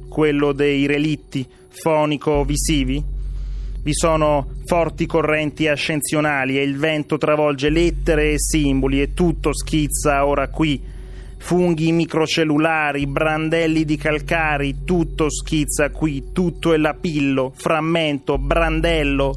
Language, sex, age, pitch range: Italian, male, 30-49, 130-155 Hz